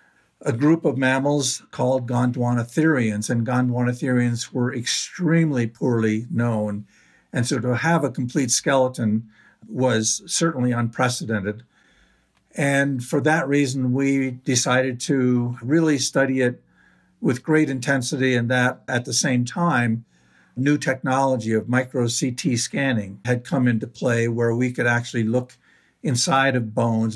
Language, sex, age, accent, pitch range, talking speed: English, male, 50-69, American, 110-130 Hz, 130 wpm